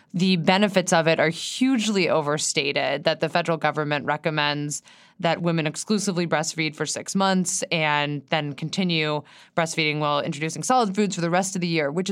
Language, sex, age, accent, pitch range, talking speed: English, female, 20-39, American, 155-200 Hz, 170 wpm